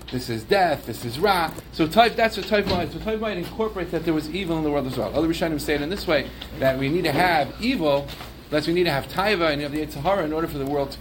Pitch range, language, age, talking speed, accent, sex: 125-165 Hz, English, 40-59, 285 wpm, American, male